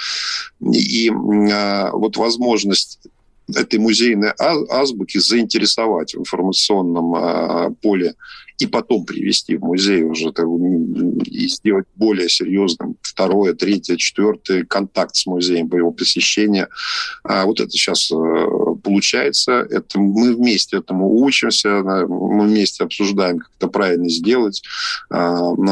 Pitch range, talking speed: 90-115 Hz, 105 wpm